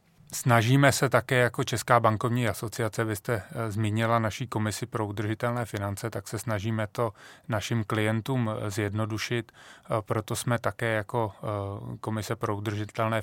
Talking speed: 130 wpm